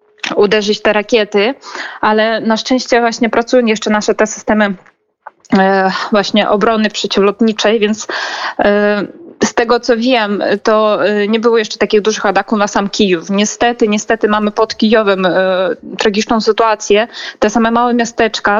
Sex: female